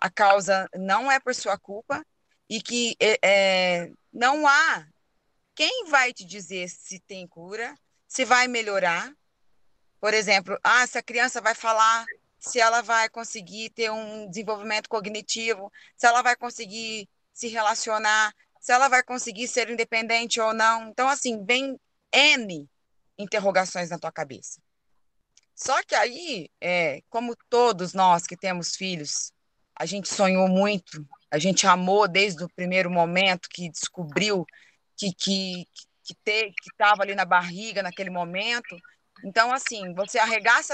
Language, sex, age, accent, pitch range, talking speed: Portuguese, female, 20-39, Brazilian, 185-230 Hz, 140 wpm